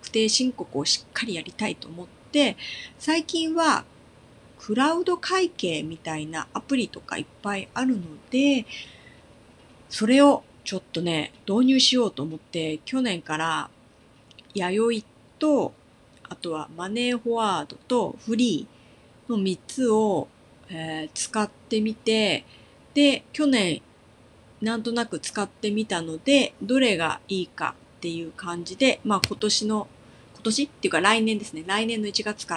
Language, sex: Japanese, female